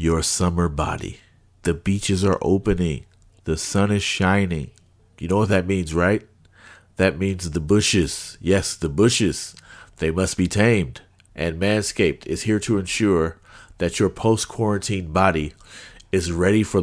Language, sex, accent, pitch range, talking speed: English, male, American, 80-100 Hz, 145 wpm